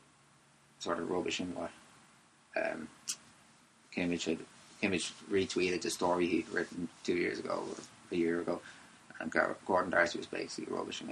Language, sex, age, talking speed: English, male, 20-39, 140 wpm